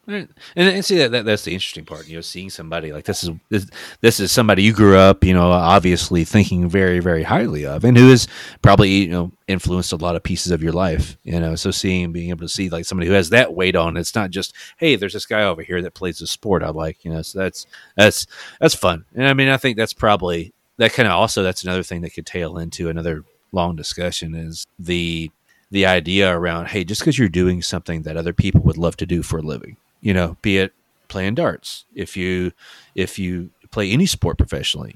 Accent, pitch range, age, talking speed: American, 85-100 Hz, 30-49, 235 wpm